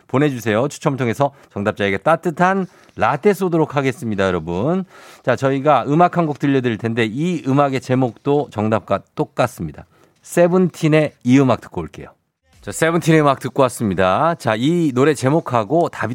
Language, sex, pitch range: Korean, male, 110-160 Hz